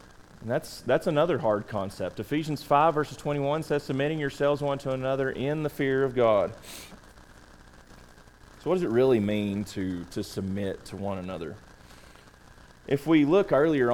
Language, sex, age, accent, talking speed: English, male, 30-49, American, 160 wpm